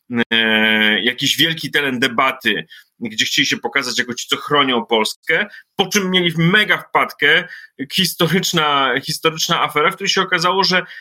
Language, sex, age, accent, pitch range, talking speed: Polish, male, 30-49, native, 115-170 Hz, 145 wpm